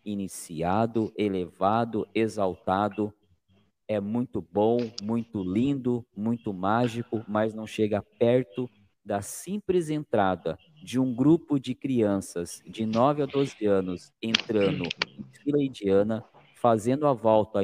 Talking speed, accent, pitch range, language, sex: 110 wpm, Brazilian, 105-135 Hz, Portuguese, male